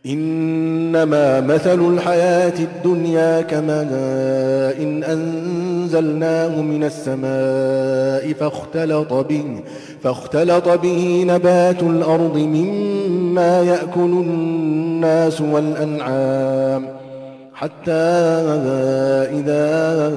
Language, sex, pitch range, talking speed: Arabic, male, 150-175 Hz, 60 wpm